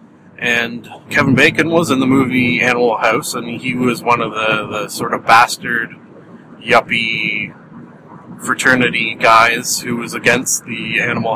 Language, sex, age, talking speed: English, male, 30-49, 145 wpm